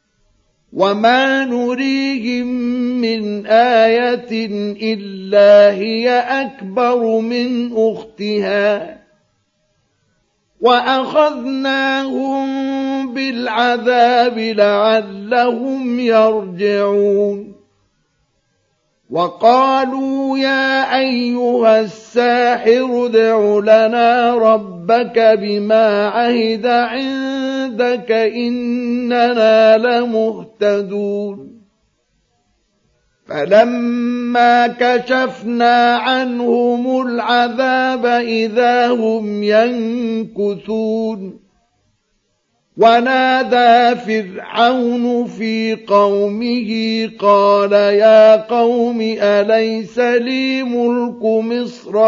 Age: 50-69